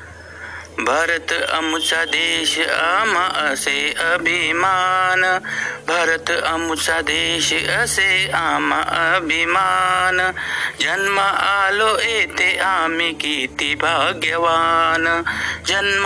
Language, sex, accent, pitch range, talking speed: Marathi, male, native, 165-215 Hz, 45 wpm